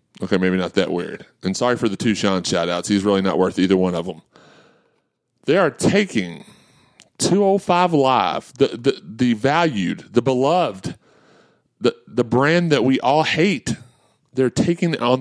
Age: 30-49